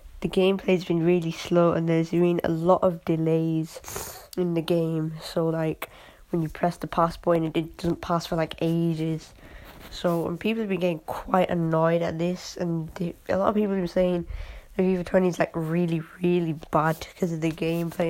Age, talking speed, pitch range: 20-39, 200 wpm, 165-180 Hz